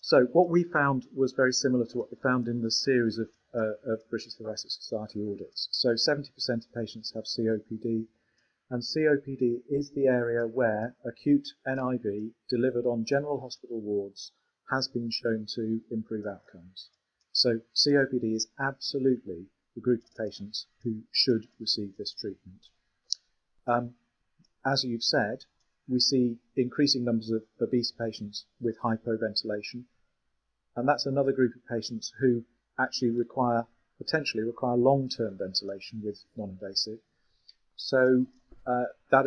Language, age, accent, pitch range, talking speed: English, 40-59, British, 110-130 Hz, 135 wpm